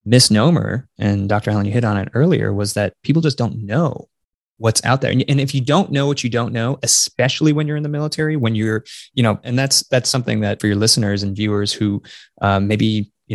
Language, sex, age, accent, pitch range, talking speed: English, male, 20-39, American, 110-140 Hz, 230 wpm